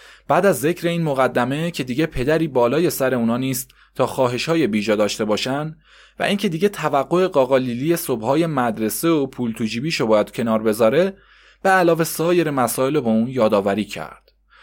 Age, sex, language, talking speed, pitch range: 20-39, male, Persian, 170 wpm, 120-160 Hz